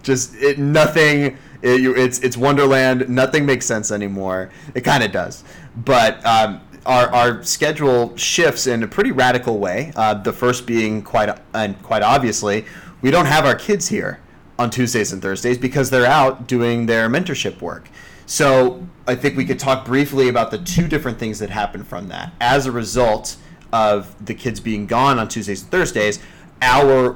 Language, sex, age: English, male, 30-49